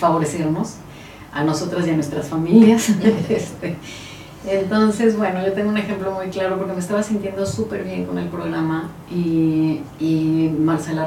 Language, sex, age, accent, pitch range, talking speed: Spanish, female, 30-49, Mexican, 150-180 Hz, 150 wpm